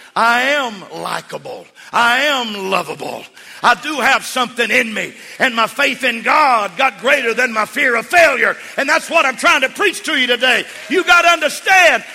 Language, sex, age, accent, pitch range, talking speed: English, male, 50-69, American, 235-360 Hz, 190 wpm